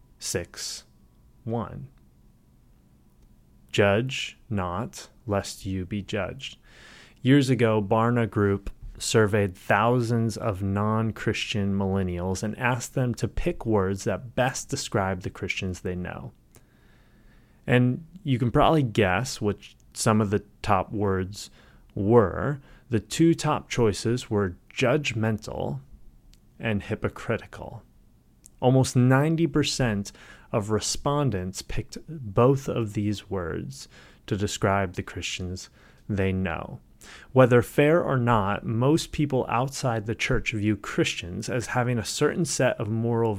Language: English